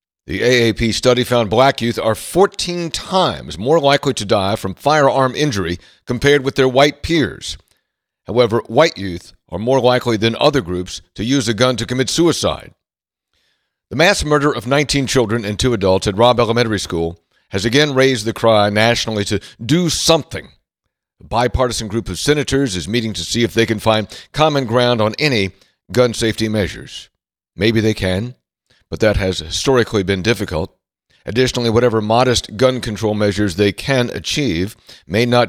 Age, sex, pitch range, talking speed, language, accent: 60-79, male, 105-130 Hz, 165 wpm, English, American